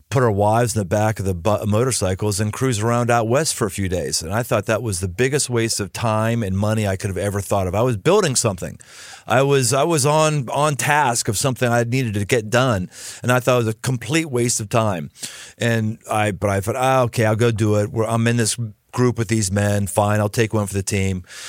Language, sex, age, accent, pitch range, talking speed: English, male, 50-69, American, 115-175 Hz, 250 wpm